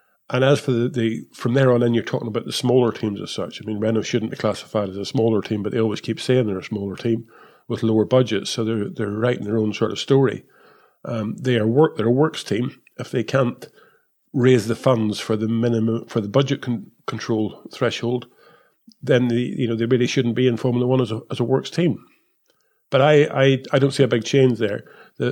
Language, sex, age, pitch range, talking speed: English, male, 50-69, 115-130 Hz, 235 wpm